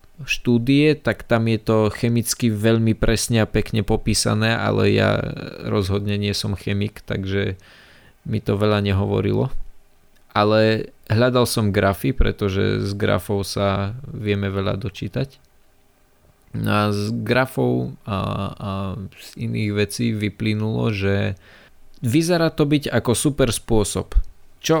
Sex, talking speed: male, 125 wpm